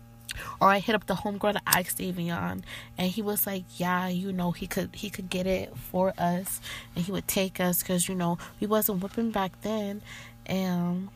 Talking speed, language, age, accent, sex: 200 wpm, English, 20-39, American, female